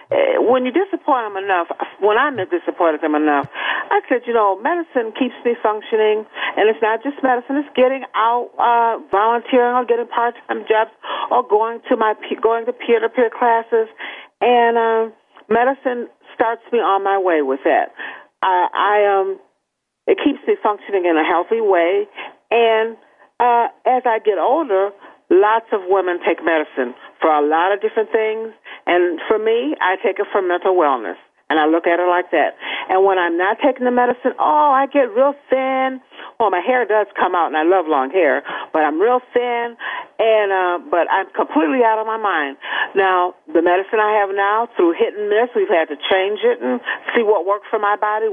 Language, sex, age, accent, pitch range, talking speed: English, female, 50-69, American, 195-245 Hz, 195 wpm